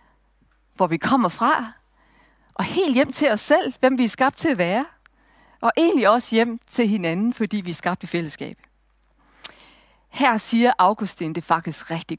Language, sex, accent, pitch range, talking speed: Danish, female, native, 195-260 Hz, 170 wpm